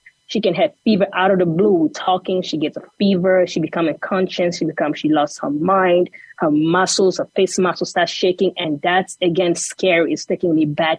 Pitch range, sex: 160-195 Hz, female